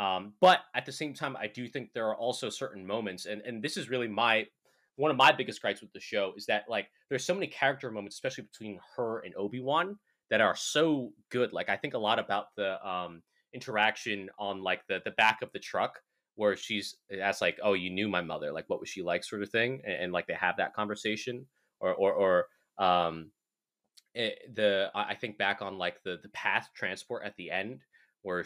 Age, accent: 20-39, American